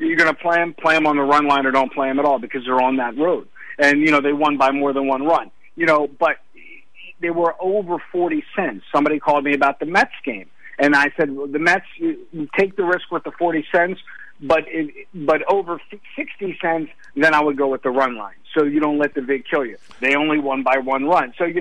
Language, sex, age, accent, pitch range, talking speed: English, male, 50-69, American, 140-180 Hz, 255 wpm